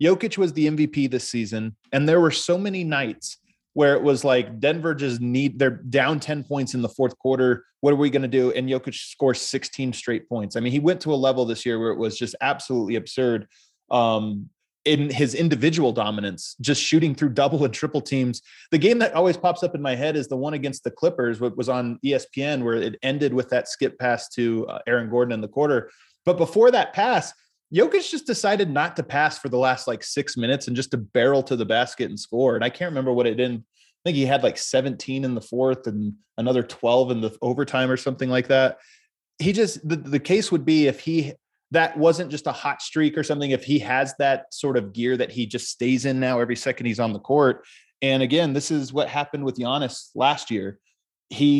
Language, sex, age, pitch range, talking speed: English, male, 20-39, 125-155 Hz, 230 wpm